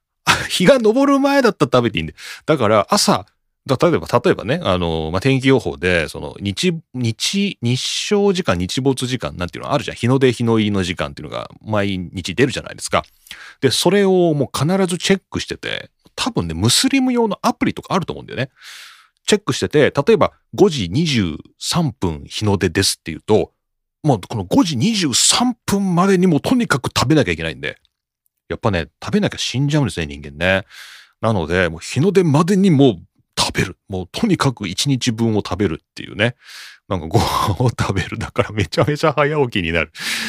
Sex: male